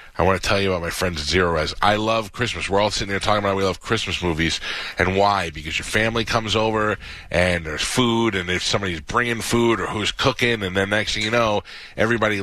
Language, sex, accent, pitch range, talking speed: English, male, American, 85-100 Hz, 235 wpm